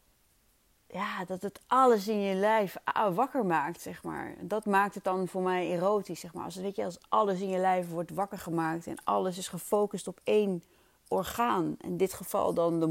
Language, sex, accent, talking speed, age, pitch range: Dutch, female, Dutch, 205 wpm, 30-49, 170-200 Hz